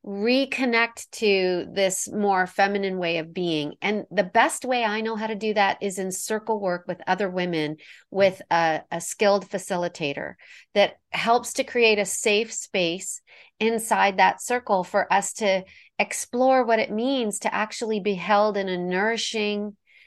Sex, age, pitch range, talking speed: female, 40-59, 190-225 Hz, 160 wpm